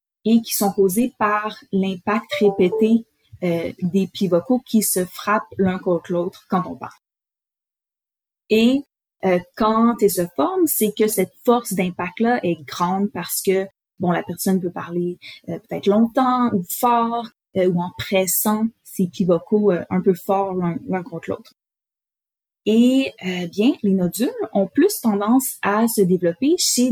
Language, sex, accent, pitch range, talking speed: French, female, Canadian, 180-230 Hz, 155 wpm